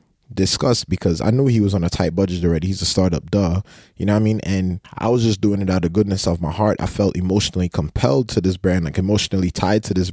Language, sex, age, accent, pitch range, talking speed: English, male, 20-39, American, 90-110 Hz, 260 wpm